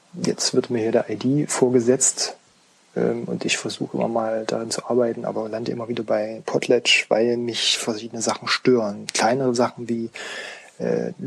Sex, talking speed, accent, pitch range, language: male, 165 wpm, German, 115-130 Hz, German